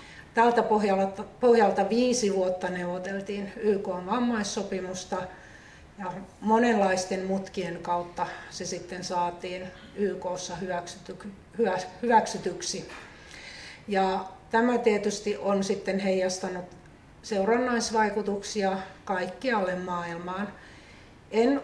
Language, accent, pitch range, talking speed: Finnish, native, 185-205 Hz, 70 wpm